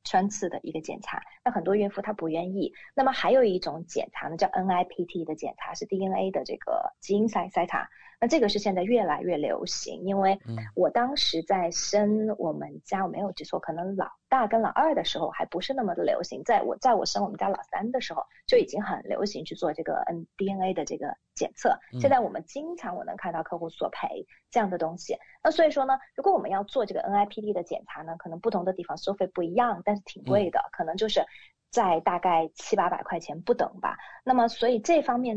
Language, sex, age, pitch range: Chinese, female, 30-49, 185-265 Hz